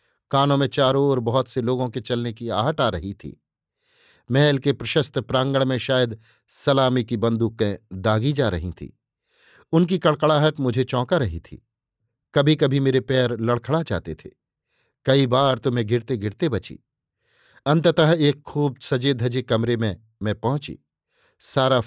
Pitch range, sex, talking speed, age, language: 115-140 Hz, male, 155 wpm, 50-69, Hindi